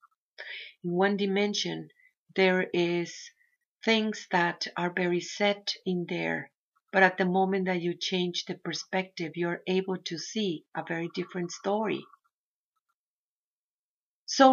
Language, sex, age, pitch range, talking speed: English, female, 50-69, 175-225 Hz, 130 wpm